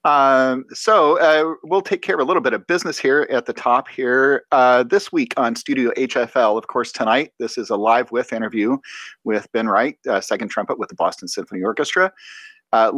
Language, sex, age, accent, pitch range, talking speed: English, male, 40-59, American, 110-165 Hz, 205 wpm